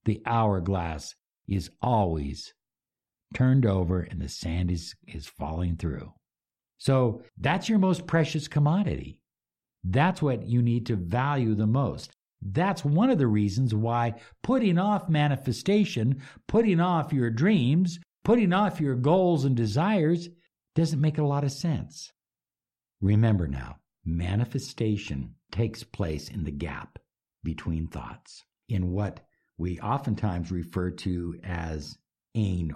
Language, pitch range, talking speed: English, 90-145 Hz, 130 wpm